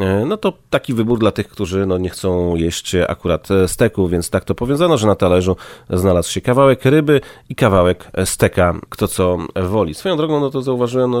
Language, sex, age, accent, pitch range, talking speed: Polish, male, 30-49, native, 90-115 Hz, 185 wpm